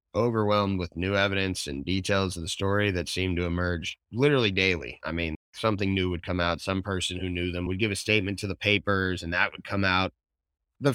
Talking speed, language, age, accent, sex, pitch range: 220 wpm, English, 30-49, American, male, 80-105 Hz